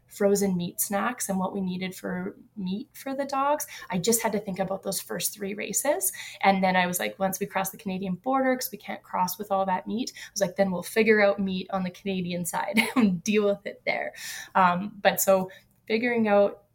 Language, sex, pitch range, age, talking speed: English, female, 190-220 Hz, 20-39, 230 wpm